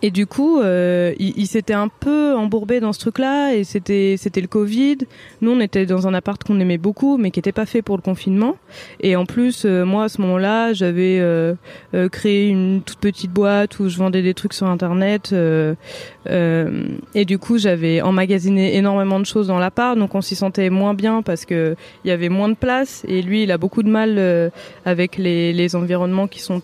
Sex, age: female, 20-39